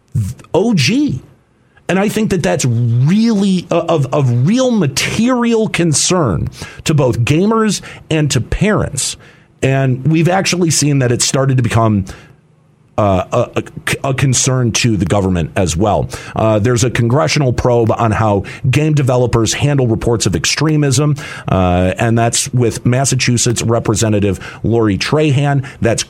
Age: 50-69